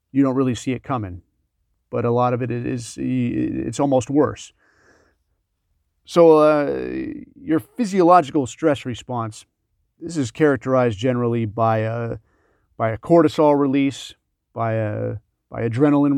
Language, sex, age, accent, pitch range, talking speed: English, male, 40-59, American, 125-150 Hz, 125 wpm